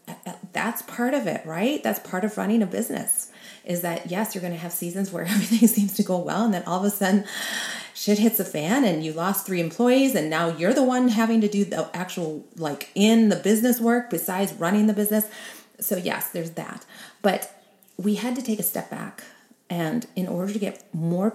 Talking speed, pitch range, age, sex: 215 wpm, 170-220 Hz, 30-49, female